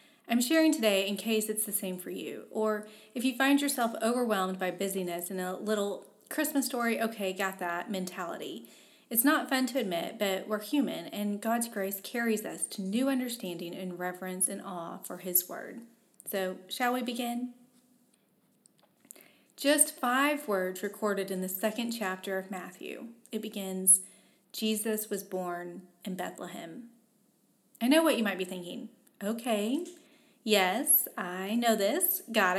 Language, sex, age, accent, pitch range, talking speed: English, female, 30-49, American, 190-245 Hz, 155 wpm